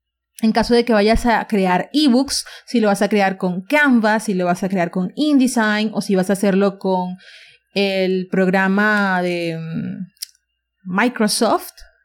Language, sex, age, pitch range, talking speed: English, female, 30-49, 190-240 Hz, 160 wpm